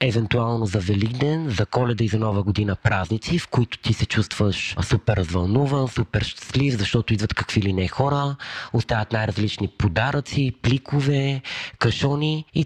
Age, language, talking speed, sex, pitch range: 30-49, Bulgarian, 145 wpm, male, 105-130 Hz